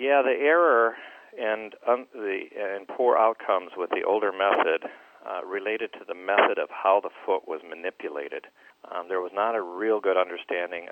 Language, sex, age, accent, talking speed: English, male, 40-59, American, 175 wpm